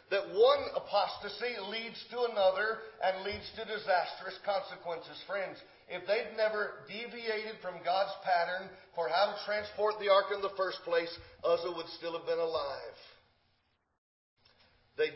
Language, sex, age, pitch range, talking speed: English, male, 50-69, 160-245 Hz, 145 wpm